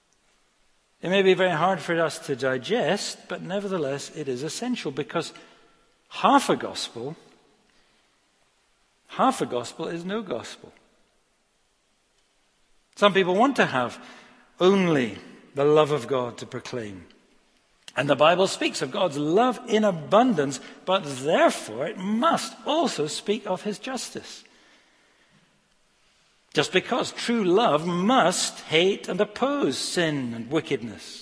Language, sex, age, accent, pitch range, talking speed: English, male, 60-79, British, 150-235 Hz, 125 wpm